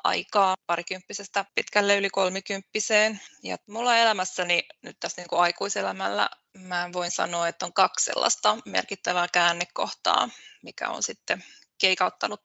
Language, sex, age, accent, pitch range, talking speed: Finnish, female, 20-39, native, 185-250 Hz, 120 wpm